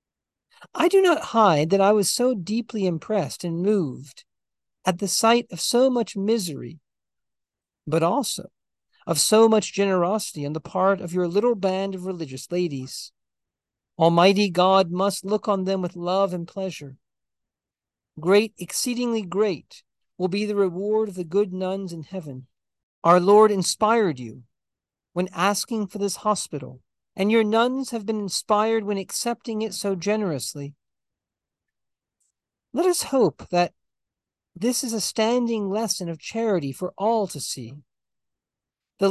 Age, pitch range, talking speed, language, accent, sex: 50-69, 170-220 Hz, 145 wpm, English, American, male